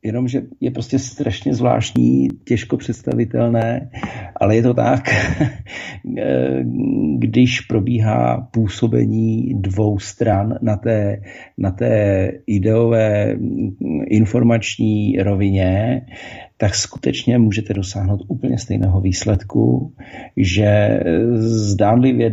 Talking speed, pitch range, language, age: 90 wpm, 90-115 Hz, Czech, 50-69